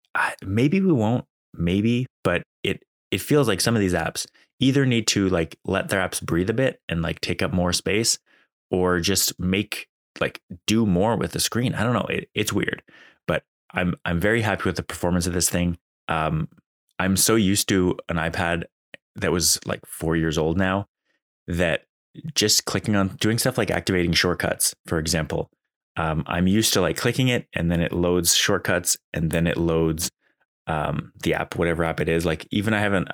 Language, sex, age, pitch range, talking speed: English, male, 20-39, 85-110 Hz, 195 wpm